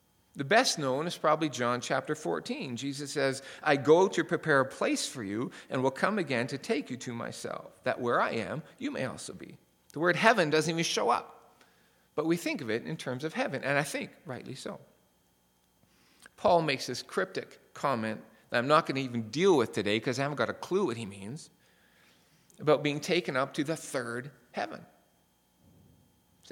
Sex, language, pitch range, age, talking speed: male, English, 115-170 Hz, 40-59, 200 wpm